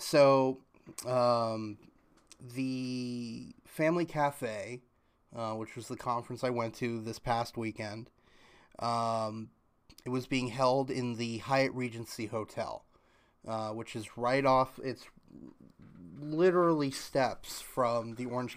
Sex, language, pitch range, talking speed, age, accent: male, English, 115-130 Hz, 120 wpm, 30-49, American